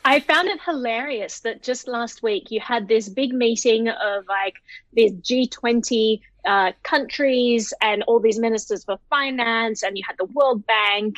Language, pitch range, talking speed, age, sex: English, 220-295 Hz, 165 wpm, 20-39, female